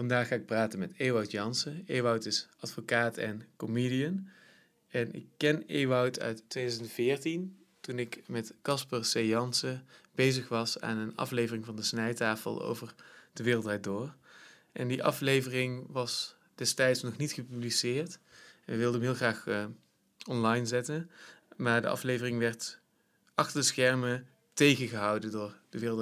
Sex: male